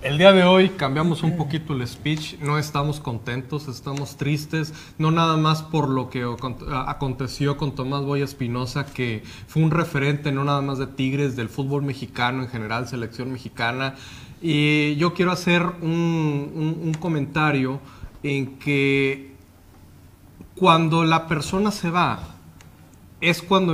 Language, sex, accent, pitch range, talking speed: Spanish, male, Mexican, 120-150 Hz, 145 wpm